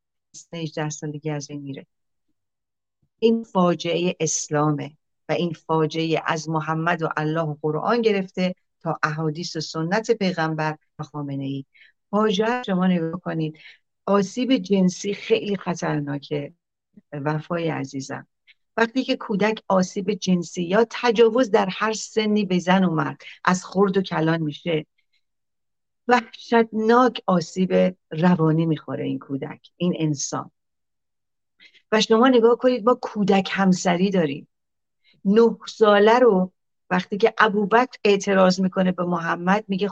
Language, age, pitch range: Persian, 50-69, 155-210 Hz